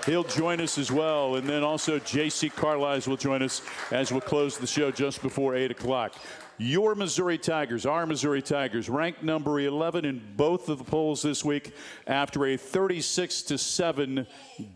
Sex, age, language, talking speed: male, 50-69, English, 165 wpm